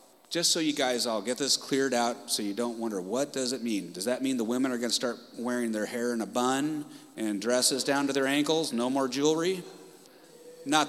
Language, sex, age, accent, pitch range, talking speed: English, male, 30-49, American, 120-185 Hz, 230 wpm